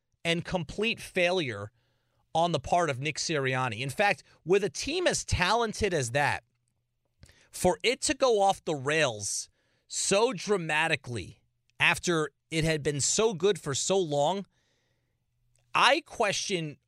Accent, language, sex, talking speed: American, English, male, 135 wpm